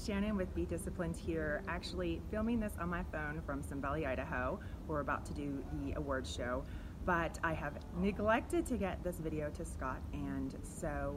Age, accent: 30-49, American